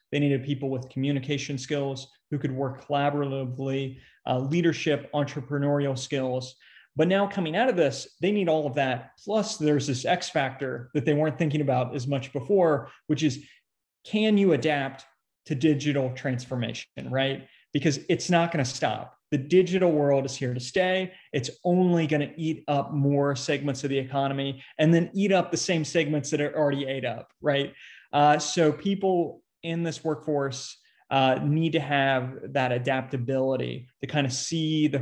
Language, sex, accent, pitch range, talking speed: English, male, American, 135-160 Hz, 175 wpm